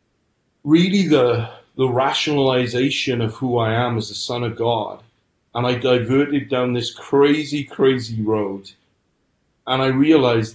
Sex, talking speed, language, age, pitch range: male, 135 wpm, English, 30-49, 105-120 Hz